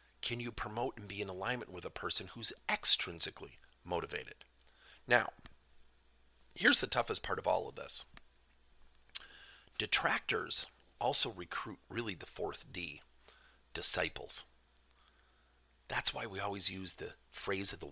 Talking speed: 130 wpm